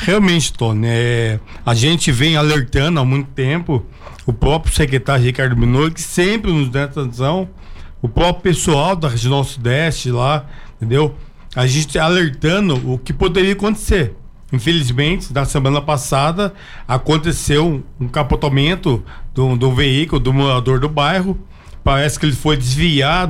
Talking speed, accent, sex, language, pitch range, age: 140 wpm, Brazilian, male, Portuguese, 130-165 Hz, 50-69